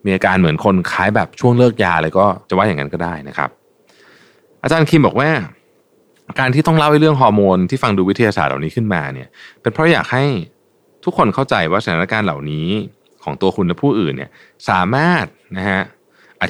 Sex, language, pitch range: male, Thai, 90-140 Hz